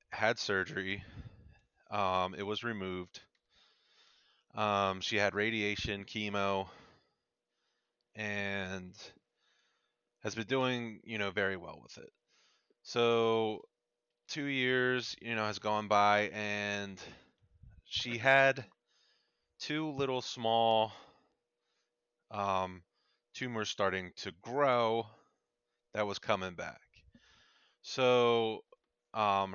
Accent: American